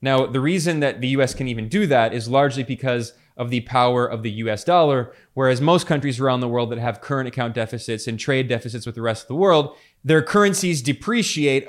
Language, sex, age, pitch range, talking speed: English, male, 20-39, 125-170 Hz, 220 wpm